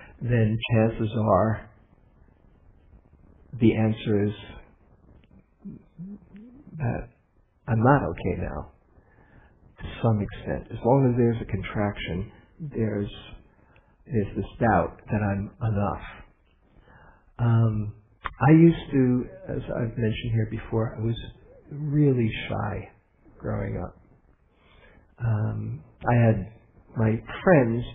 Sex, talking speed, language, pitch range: male, 100 wpm, English, 105-120 Hz